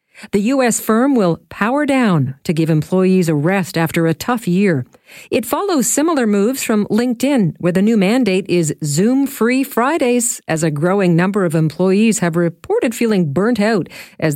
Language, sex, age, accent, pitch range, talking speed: English, female, 50-69, American, 165-225 Hz, 165 wpm